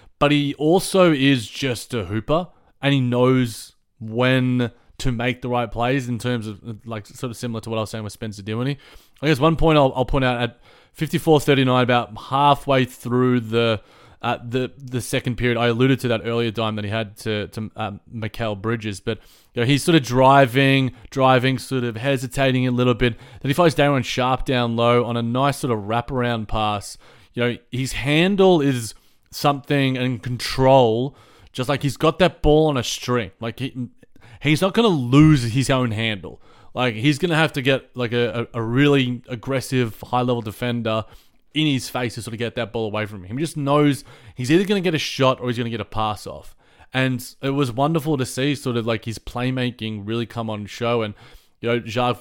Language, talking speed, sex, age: English, 210 wpm, male, 20-39